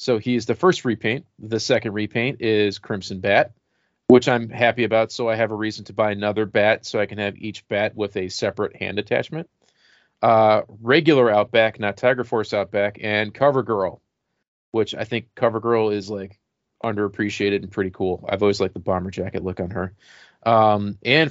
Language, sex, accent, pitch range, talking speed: English, male, American, 105-120 Hz, 185 wpm